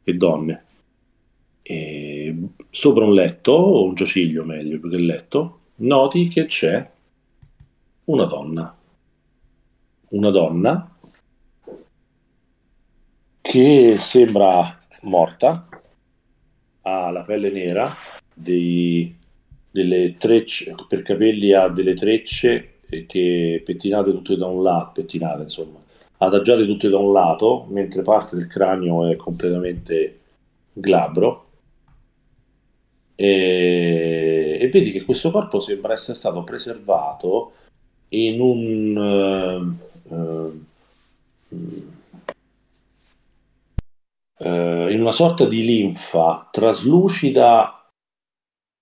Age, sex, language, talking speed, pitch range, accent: 50-69, male, English, 90 wpm, 85-115 Hz, Italian